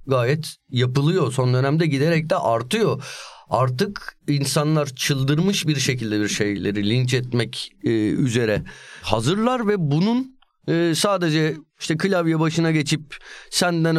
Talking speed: 110 wpm